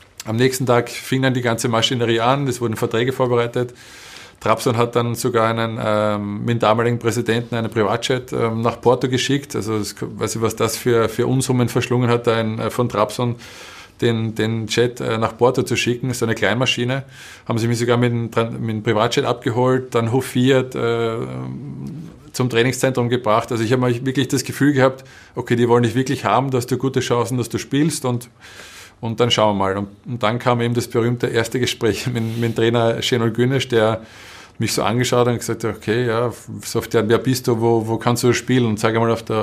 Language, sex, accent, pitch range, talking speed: German, male, Austrian, 110-125 Hz, 205 wpm